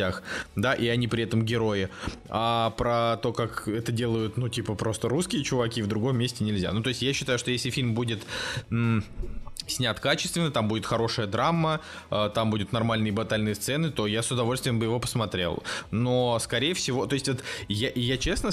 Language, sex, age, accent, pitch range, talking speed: Russian, male, 20-39, native, 110-135 Hz, 190 wpm